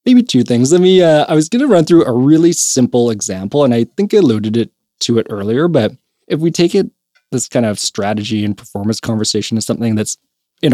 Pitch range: 110-135 Hz